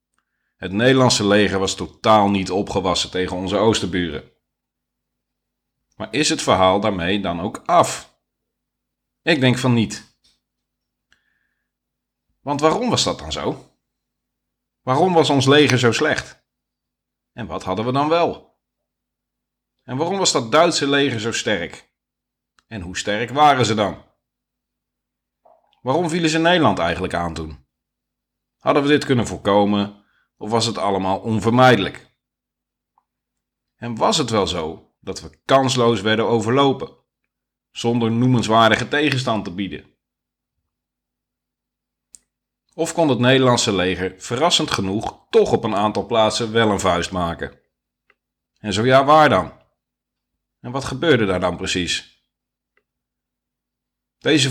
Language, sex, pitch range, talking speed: Dutch, male, 95-130 Hz, 125 wpm